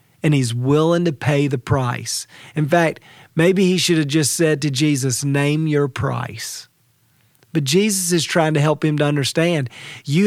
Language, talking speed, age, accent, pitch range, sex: English, 175 wpm, 40-59, American, 135-165 Hz, male